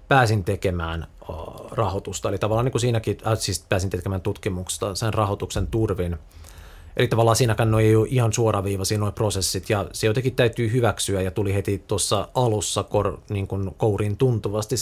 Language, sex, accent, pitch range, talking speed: Finnish, male, native, 90-115 Hz, 160 wpm